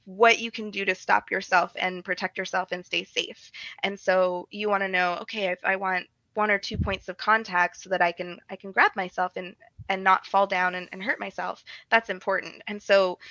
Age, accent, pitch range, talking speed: 20-39, American, 180-215 Hz, 225 wpm